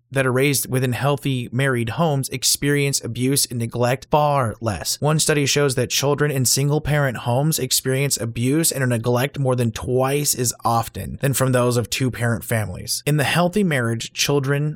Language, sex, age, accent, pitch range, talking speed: English, male, 30-49, American, 115-135 Hz, 165 wpm